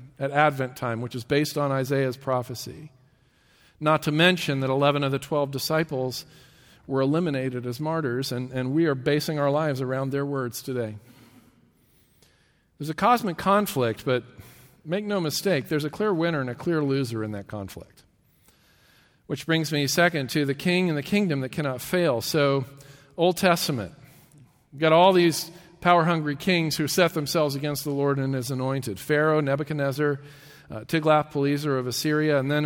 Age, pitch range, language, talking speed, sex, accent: 50-69, 130-155 Hz, English, 165 wpm, male, American